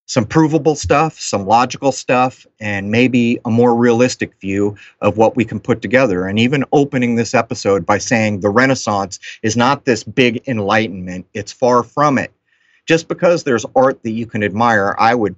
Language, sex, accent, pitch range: English, male, American, 105-130 Hz